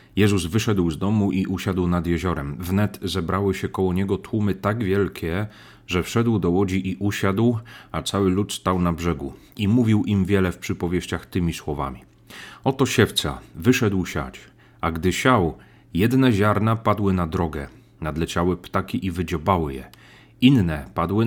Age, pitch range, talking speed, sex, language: 30-49, 85-110 Hz, 155 wpm, male, Polish